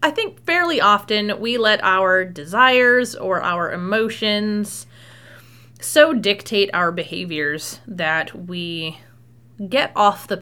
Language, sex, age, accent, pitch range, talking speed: English, female, 30-49, American, 170-230 Hz, 115 wpm